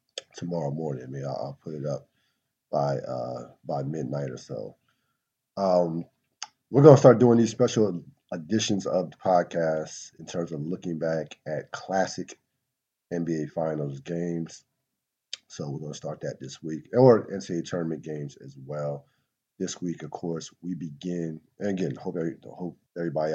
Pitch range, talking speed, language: 75-90 Hz, 150 wpm, English